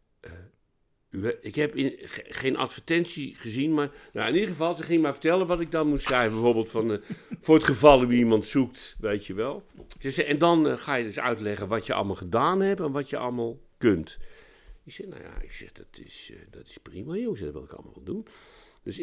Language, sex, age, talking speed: Dutch, male, 60-79, 230 wpm